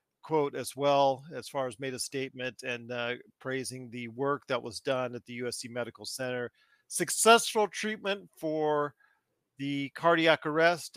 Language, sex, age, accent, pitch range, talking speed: English, male, 40-59, American, 130-180 Hz, 155 wpm